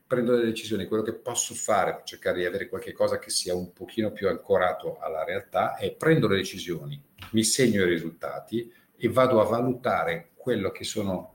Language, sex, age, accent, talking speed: Italian, male, 50-69, native, 185 wpm